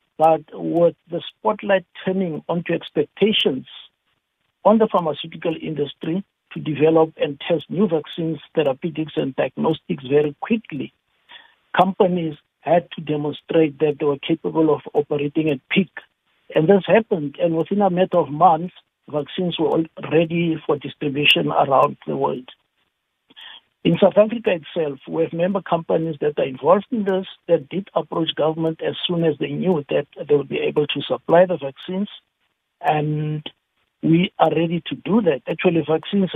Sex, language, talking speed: male, English, 150 wpm